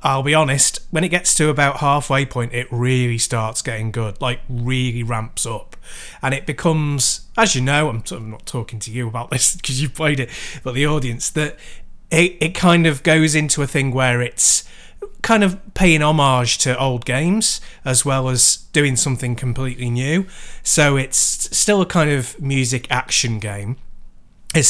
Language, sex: English, male